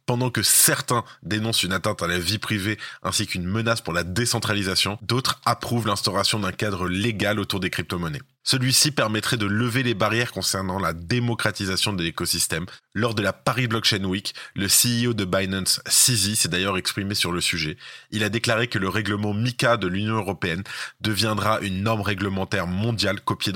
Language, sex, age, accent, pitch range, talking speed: French, male, 20-39, French, 95-115 Hz, 175 wpm